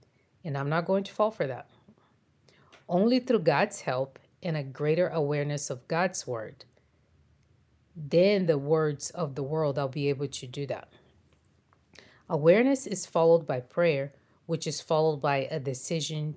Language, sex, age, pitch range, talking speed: English, female, 30-49, 135-165 Hz, 155 wpm